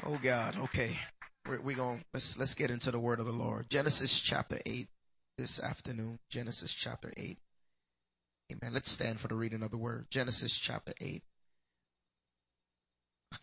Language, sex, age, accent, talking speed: English, male, 20-39, American, 160 wpm